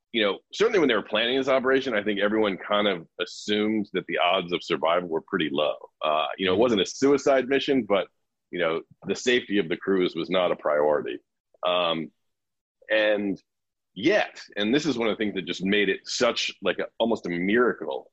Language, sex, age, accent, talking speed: English, male, 40-59, American, 210 wpm